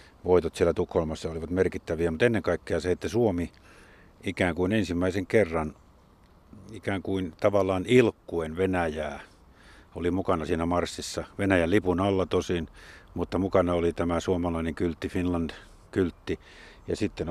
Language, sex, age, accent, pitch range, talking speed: Finnish, male, 50-69, native, 85-100 Hz, 130 wpm